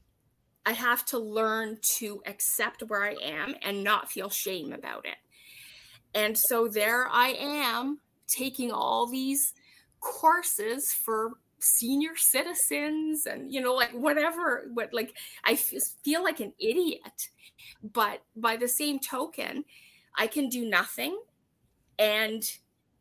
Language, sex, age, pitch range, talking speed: English, female, 30-49, 210-265 Hz, 125 wpm